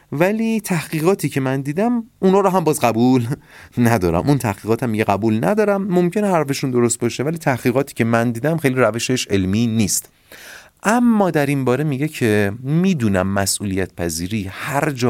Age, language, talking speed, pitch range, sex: 30-49, Persian, 165 wpm, 105-155 Hz, male